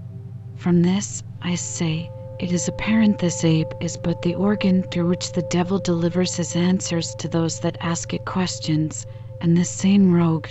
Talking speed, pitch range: 170 wpm, 125-180 Hz